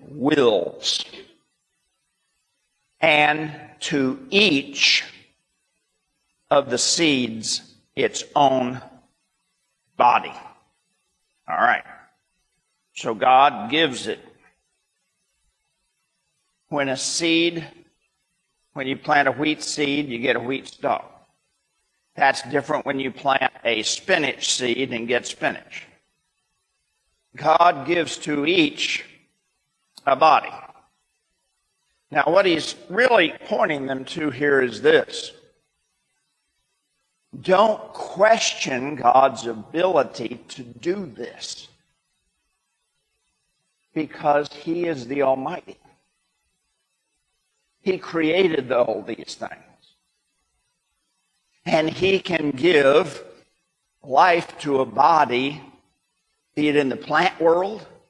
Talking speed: 90 wpm